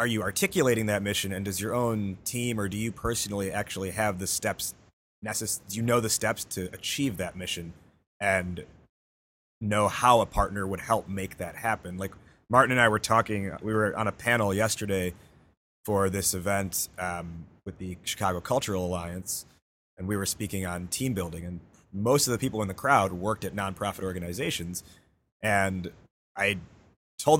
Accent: American